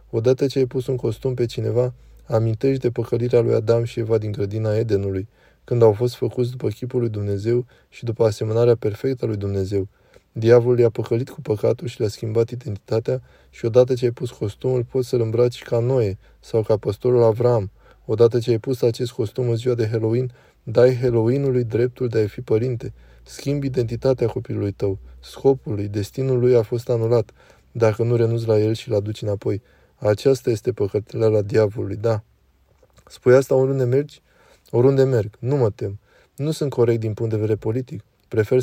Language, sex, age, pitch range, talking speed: Romanian, male, 20-39, 110-130 Hz, 180 wpm